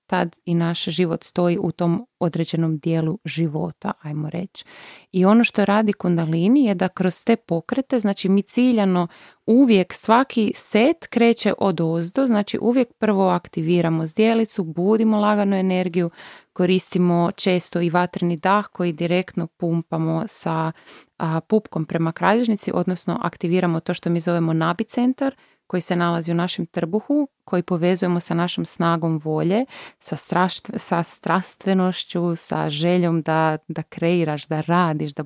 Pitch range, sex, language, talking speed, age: 170-205 Hz, female, Croatian, 140 wpm, 30-49